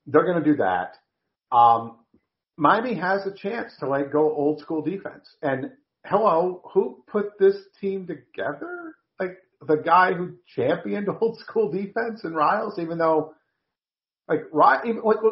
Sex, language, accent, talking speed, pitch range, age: male, English, American, 140 wpm, 115-180 Hz, 50-69